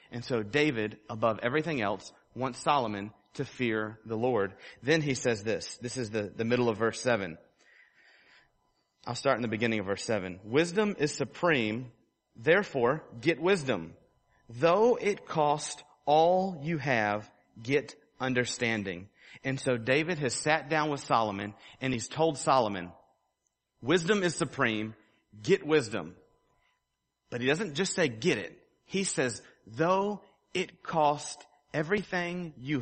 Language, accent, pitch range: English, American, 110-150 Hz